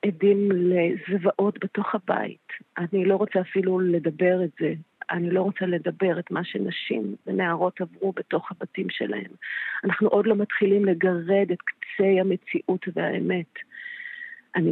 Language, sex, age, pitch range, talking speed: Hebrew, female, 40-59, 180-200 Hz, 135 wpm